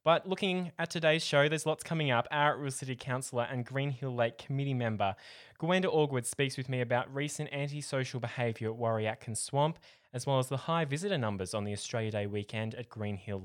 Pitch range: 120-150 Hz